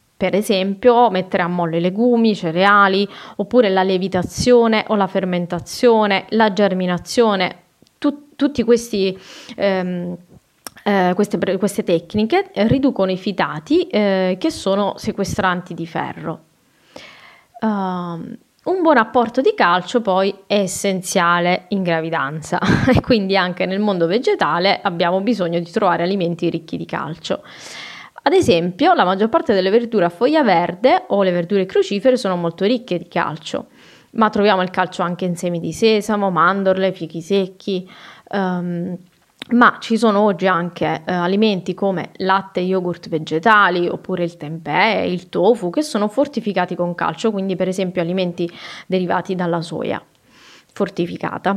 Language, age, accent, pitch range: Italian, 20-39, native, 175-215 Hz